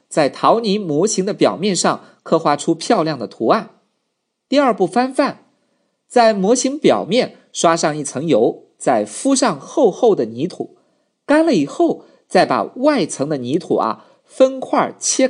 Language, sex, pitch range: Chinese, male, 175-280 Hz